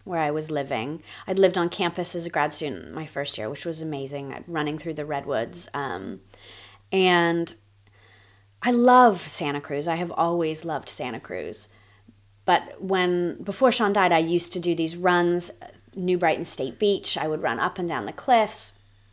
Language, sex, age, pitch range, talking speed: English, female, 30-49, 125-180 Hz, 180 wpm